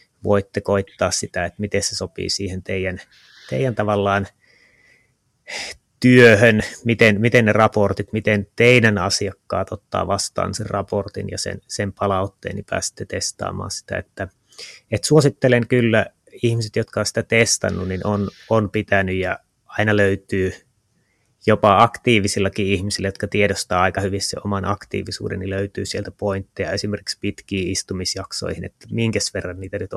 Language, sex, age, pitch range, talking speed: Finnish, male, 30-49, 95-110 Hz, 140 wpm